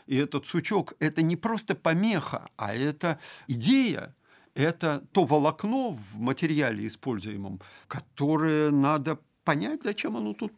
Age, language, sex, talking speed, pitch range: 50-69, Russian, male, 130 wpm, 115-170 Hz